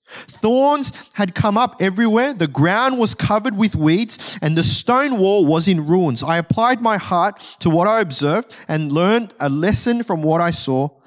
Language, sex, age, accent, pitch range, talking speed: English, male, 20-39, Australian, 145-200 Hz, 185 wpm